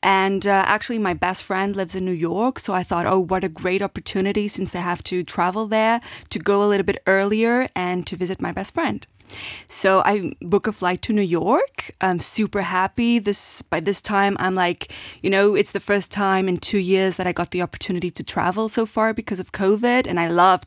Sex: female